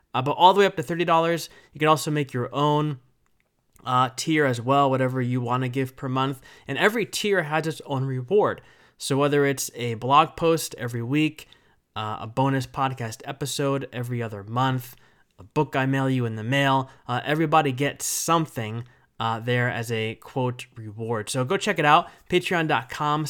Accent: American